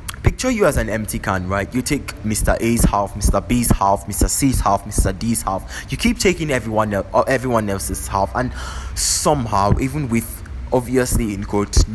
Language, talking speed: English, 180 wpm